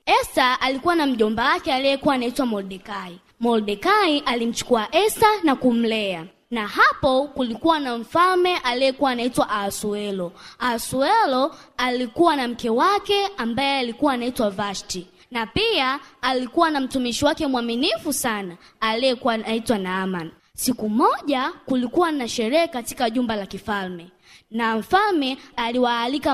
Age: 20-39